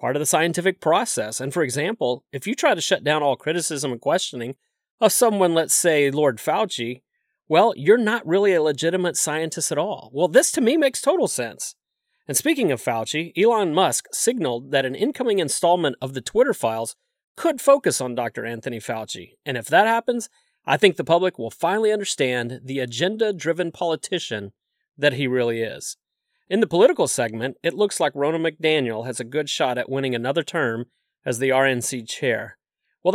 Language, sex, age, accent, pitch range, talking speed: English, male, 40-59, American, 125-180 Hz, 185 wpm